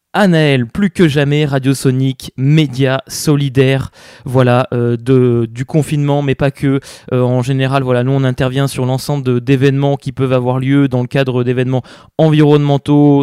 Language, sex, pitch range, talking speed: French, male, 130-155 Hz, 165 wpm